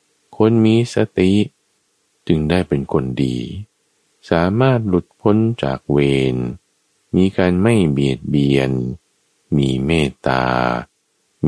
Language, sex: Thai, male